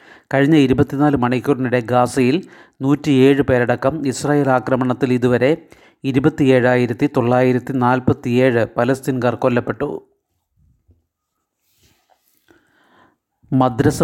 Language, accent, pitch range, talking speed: Malayalam, native, 125-140 Hz, 65 wpm